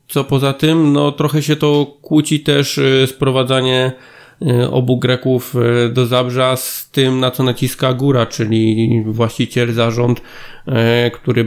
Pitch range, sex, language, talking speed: 120-130 Hz, male, Polish, 125 wpm